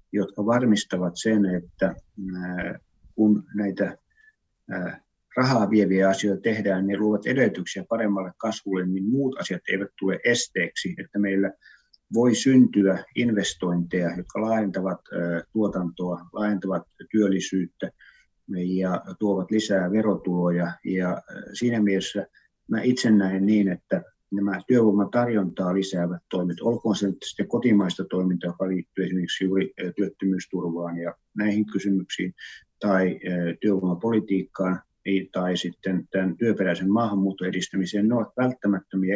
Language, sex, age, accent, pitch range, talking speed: Finnish, male, 50-69, native, 95-105 Hz, 105 wpm